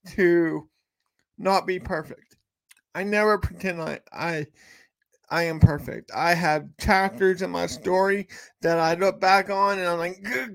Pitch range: 185-230 Hz